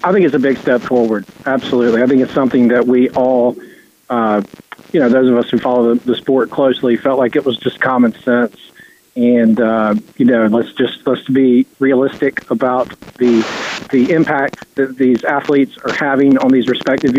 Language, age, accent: English, 40-59, American